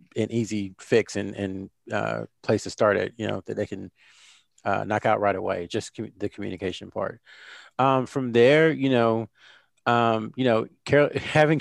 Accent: American